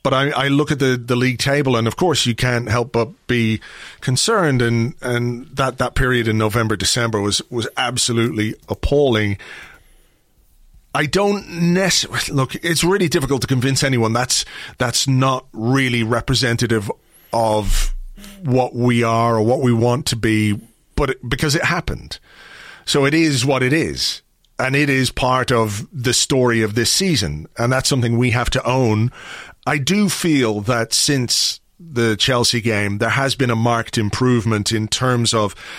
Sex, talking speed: male, 170 wpm